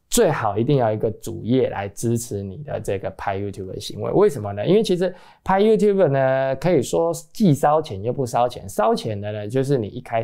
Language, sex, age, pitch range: Chinese, male, 20-39, 105-160 Hz